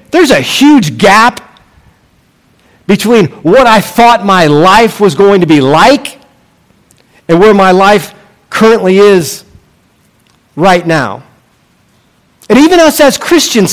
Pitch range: 195-280 Hz